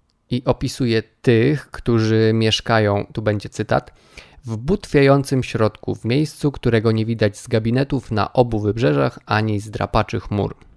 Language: Polish